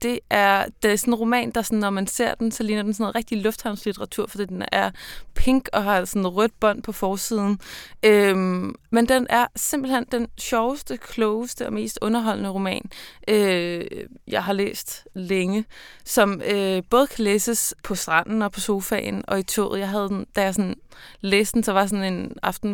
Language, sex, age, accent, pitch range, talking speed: Danish, female, 20-39, native, 185-230 Hz, 200 wpm